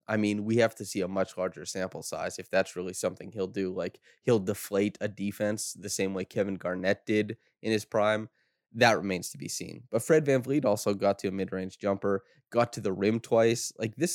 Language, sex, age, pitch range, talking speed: English, male, 20-39, 100-120 Hz, 225 wpm